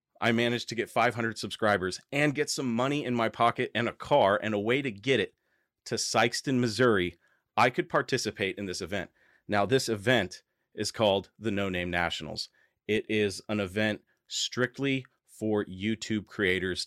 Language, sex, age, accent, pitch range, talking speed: English, male, 30-49, American, 95-120 Hz, 170 wpm